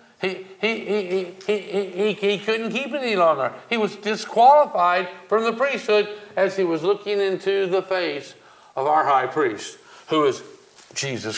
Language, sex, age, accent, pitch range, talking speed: English, male, 60-79, American, 165-210 Hz, 160 wpm